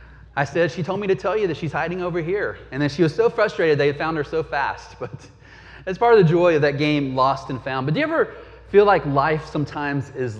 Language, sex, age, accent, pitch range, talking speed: English, male, 30-49, American, 135-175 Hz, 265 wpm